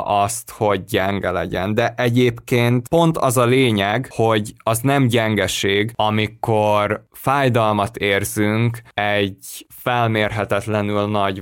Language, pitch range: Hungarian, 100-120 Hz